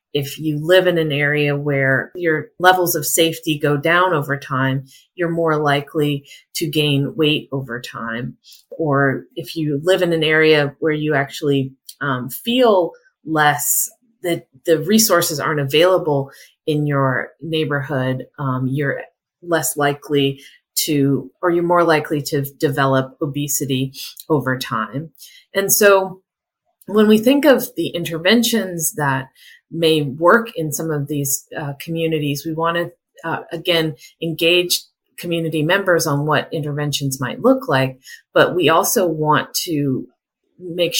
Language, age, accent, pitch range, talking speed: English, 30-49, American, 140-170 Hz, 140 wpm